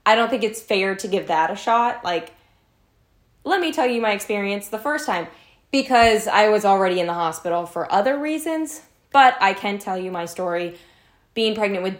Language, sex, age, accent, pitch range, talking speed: English, female, 10-29, American, 175-225 Hz, 200 wpm